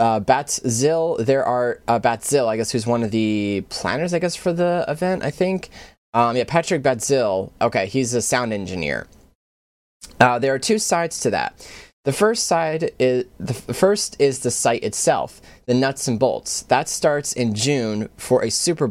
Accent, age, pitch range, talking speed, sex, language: American, 20-39, 110-140 Hz, 180 wpm, male, English